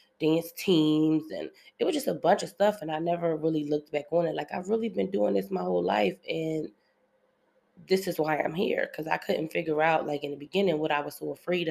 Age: 20-39